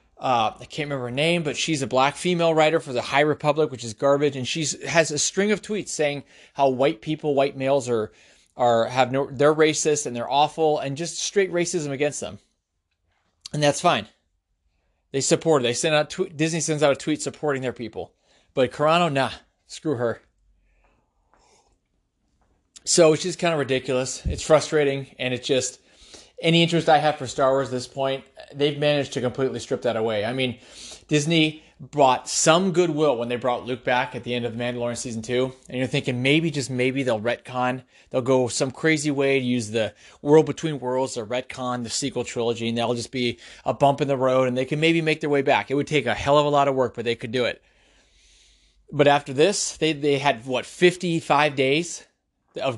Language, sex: English, male